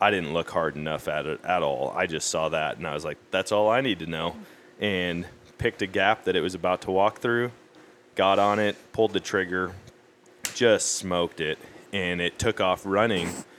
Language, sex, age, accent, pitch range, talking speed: English, male, 20-39, American, 85-105 Hz, 210 wpm